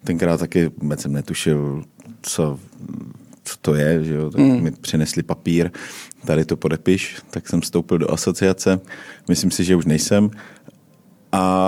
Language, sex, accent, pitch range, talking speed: Czech, male, native, 85-95 Hz, 135 wpm